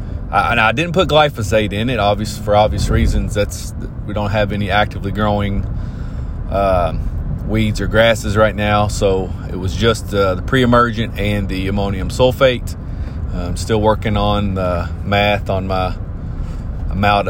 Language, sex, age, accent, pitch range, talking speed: English, male, 30-49, American, 95-115 Hz, 155 wpm